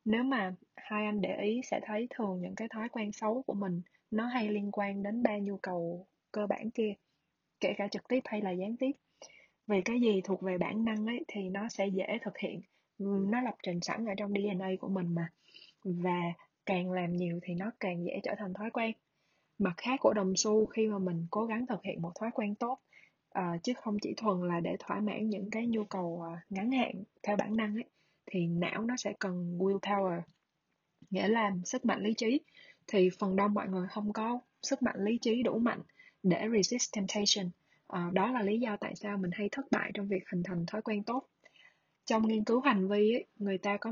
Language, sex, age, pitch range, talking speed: Vietnamese, female, 20-39, 185-220 Hz, 215 wpm